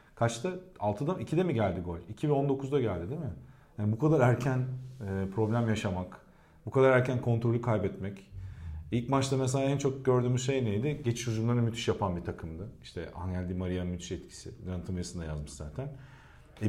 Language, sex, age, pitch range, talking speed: Turkish, male, 40-59, 100-135 Hz, 175 wpm